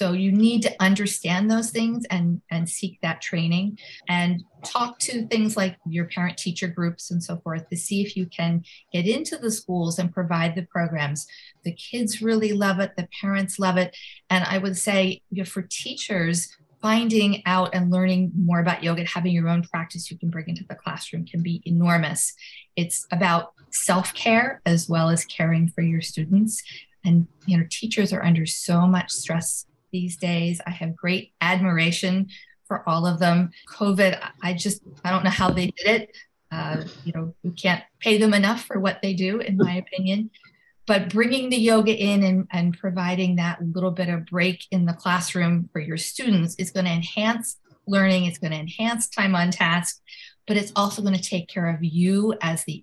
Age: 40-59